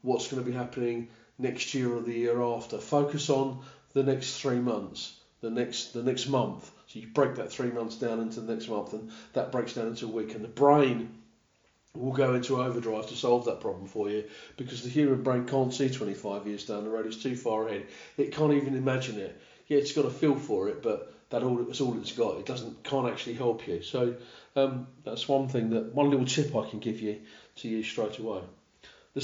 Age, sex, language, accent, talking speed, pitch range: 40-59, male, English, British, 230 wpm, 110-135 Hz